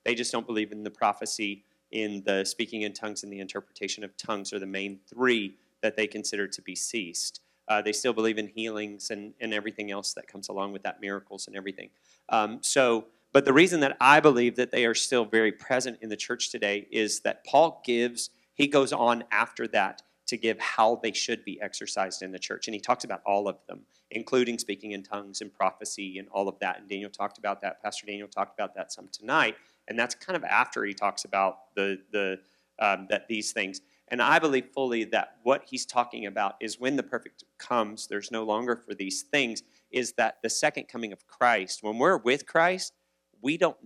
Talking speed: 220 wpm